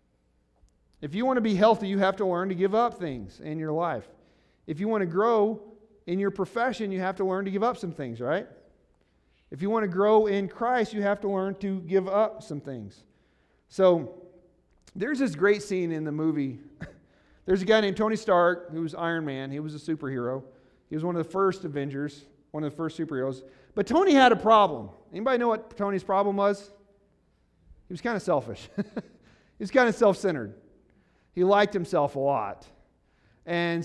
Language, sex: English, male